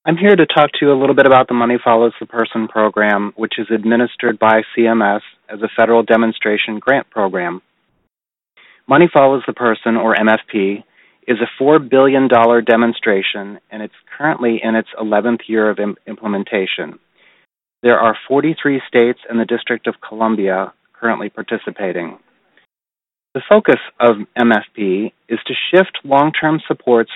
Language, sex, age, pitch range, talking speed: English, male, 30-49, 110-140 Hz, 150 wpm